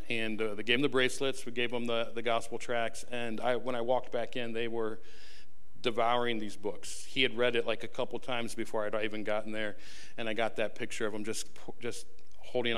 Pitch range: 110-120 Hz